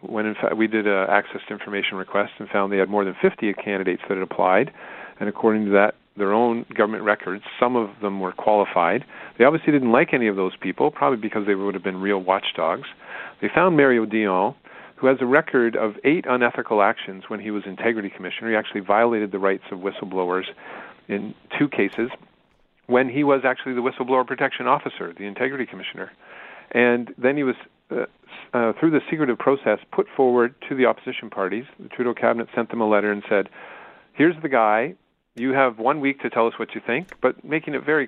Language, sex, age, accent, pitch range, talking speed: English, male, 40-59, American, 100-125 Hz, 205 wpm